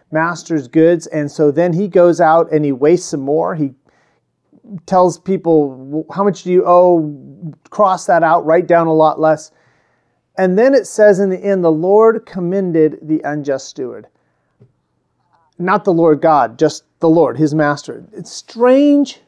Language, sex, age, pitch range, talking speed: English, male, 40-59, 150-190 Hz, 165 wpm